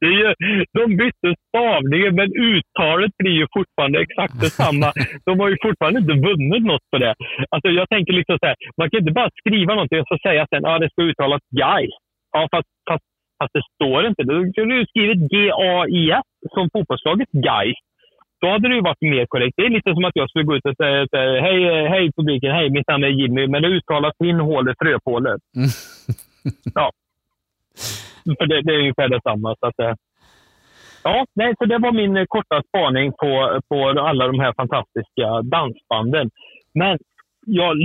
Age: 30-49